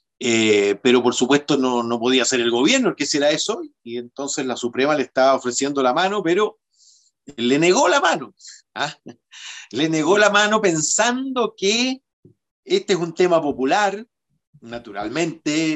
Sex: male